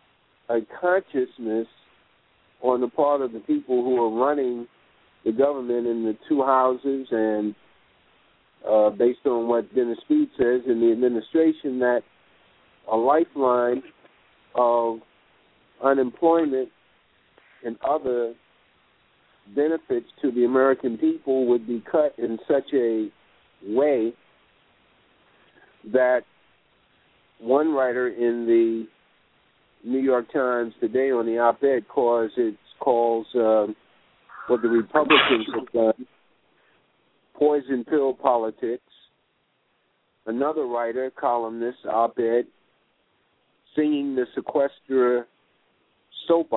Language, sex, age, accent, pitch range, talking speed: English, male, 50-69, American, 115-135 Hz, 100 wpm